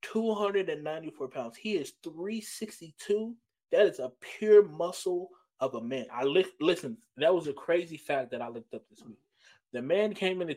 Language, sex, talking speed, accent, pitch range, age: English, male, 175 wpm, American, 130-190 Hz, 20-39